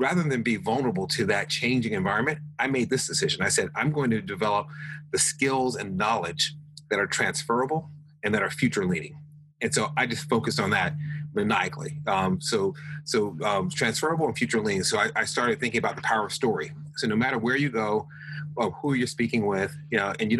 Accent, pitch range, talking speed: American, 125-155 Hz, 210 wpm